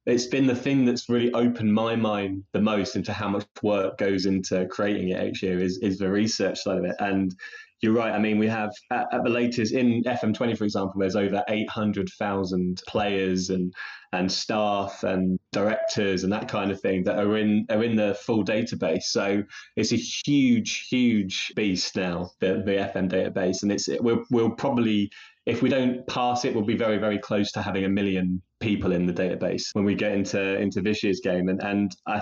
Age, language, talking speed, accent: 20-39, English, 205 wpm, British